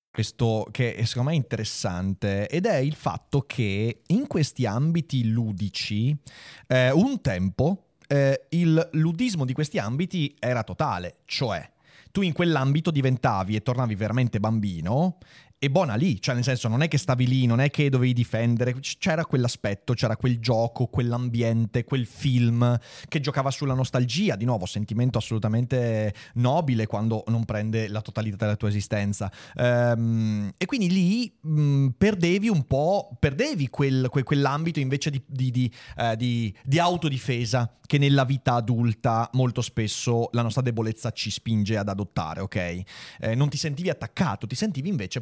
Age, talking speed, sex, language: 30-49, 160 wpm, male, Italian